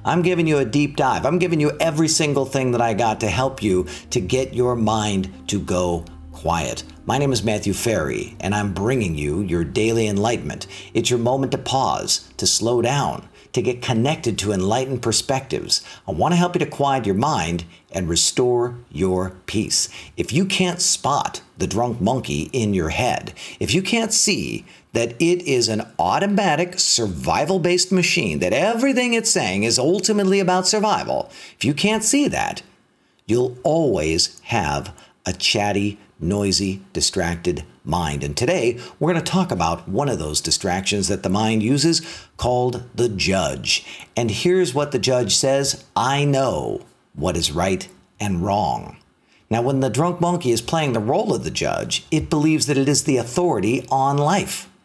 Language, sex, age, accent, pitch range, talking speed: English, male, 50-69, American, 100-165 Hz, 170 wpm